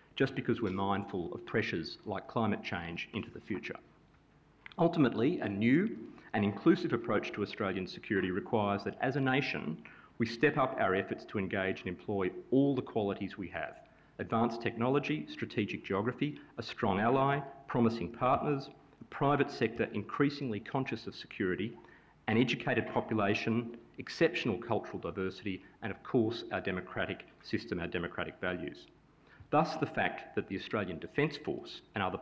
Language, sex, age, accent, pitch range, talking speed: English, male, 40-59, Australian, 100-130 Hz, 150 wpm